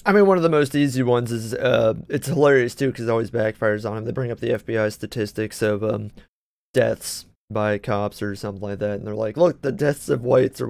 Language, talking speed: English, 240 wpm